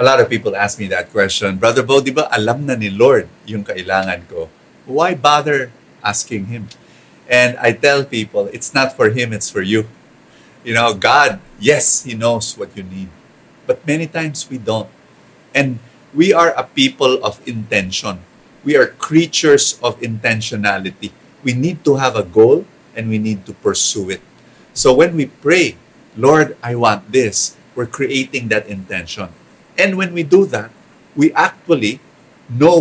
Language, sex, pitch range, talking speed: English, male, 115-155 Hz, 165 wpm